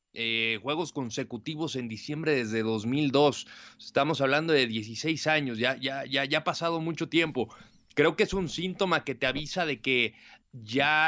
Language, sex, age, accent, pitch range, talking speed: Spanish, male, 30-49, Mexican, 135-180 Hz, 165 wpm